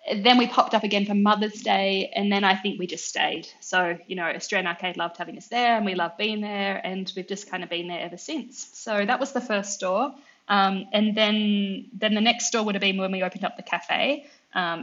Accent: Australian